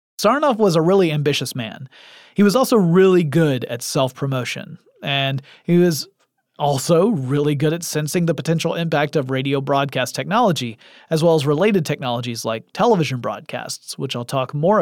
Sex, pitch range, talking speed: male, 135-170 Hz, 160 wpm